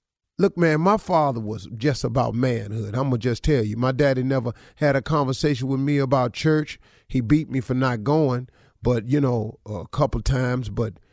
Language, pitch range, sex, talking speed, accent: English, 115-145 Hz, male, 205 wpm, American